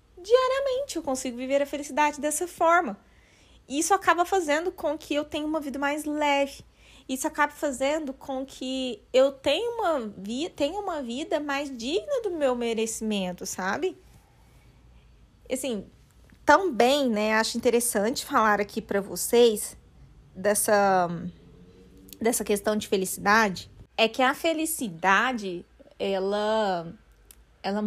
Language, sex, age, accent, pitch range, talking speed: Portuguese, female, 20-39, Brazilian, 210-285 Hz, 125 wpm